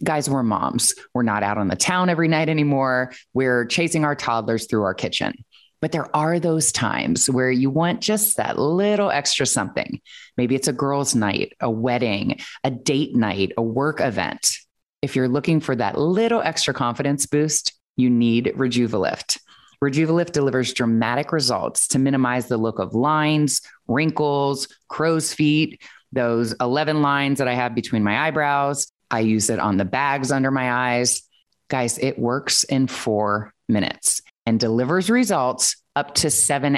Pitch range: 120-155 Hz